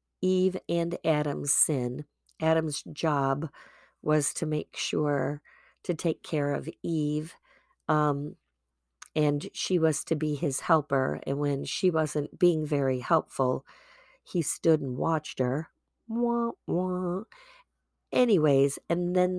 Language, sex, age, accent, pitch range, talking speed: English, female, 50-69, American, 140-175 Hz, 120 wpm